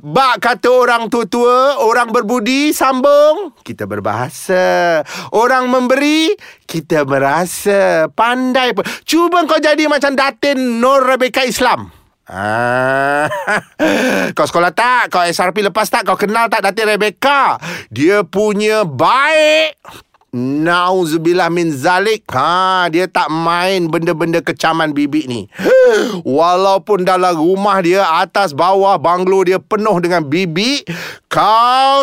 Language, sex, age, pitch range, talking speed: Malay, male, 30-49, 190-260 Hz, 115 wpm